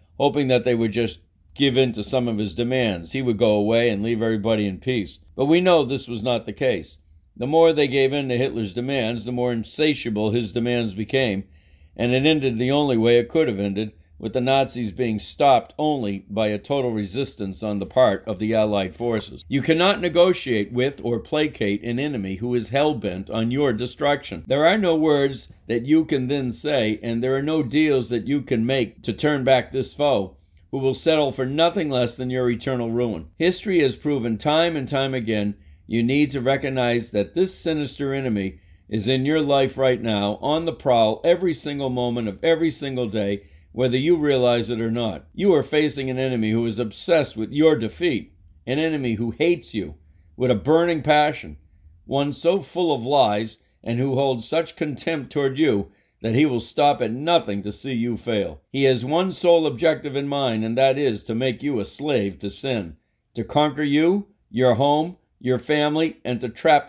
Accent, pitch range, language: American, 110-145 Hz, English